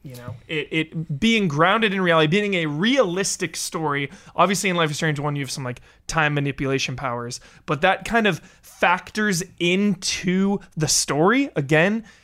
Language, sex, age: English, male, 20-39